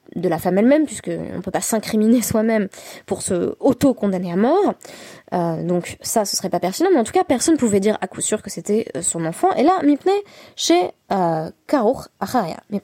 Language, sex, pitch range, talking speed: French, female, 185-265 Hz, 205 wpm